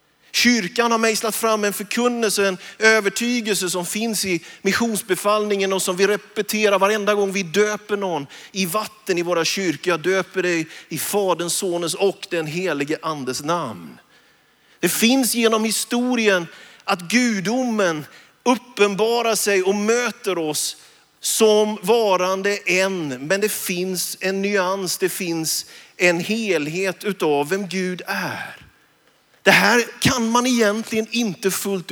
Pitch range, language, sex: 180-220 Hz, Swedish, male